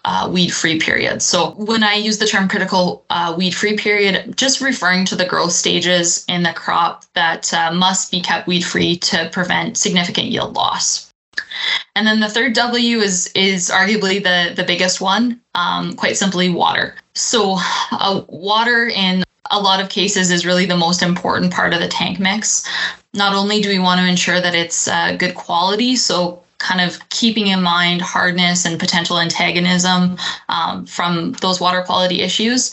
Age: 20-39